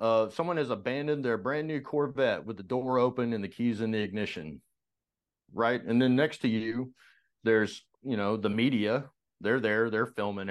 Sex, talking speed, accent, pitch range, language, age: male, 190 wpm, American, 110-125 Hz, English, 40-59